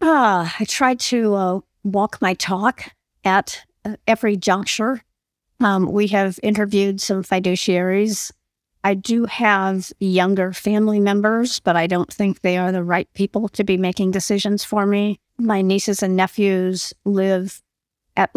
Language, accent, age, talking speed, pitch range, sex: English, American, 50-69, 145 wpm, 185-220 Hz, female